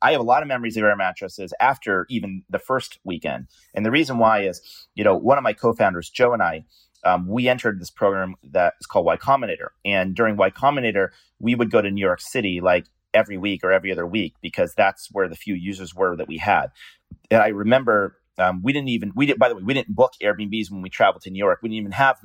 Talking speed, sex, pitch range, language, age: 250 wpm, male, 90-105 Hz, English, 30-49